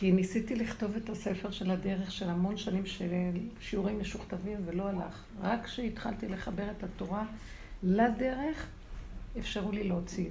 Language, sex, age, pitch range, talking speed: Hebrew, female, 60-79, 180-220 Hz, 140 wpm